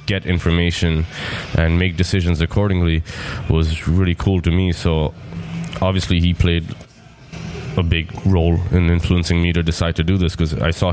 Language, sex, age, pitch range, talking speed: English, male, 20-39, 85-105 Hz, 160 wpm